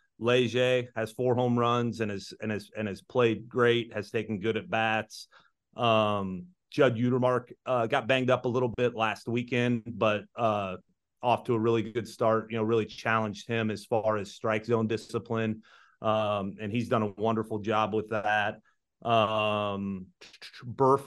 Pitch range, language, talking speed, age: 110-120 Hz, English, 170 wpm, 30-49